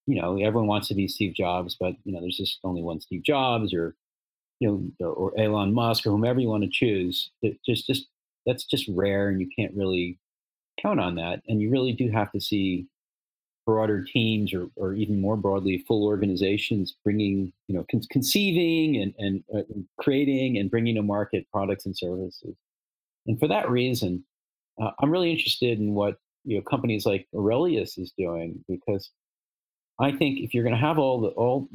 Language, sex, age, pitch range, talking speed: English, male, 40-59, 95-120 Hz, 195 wpm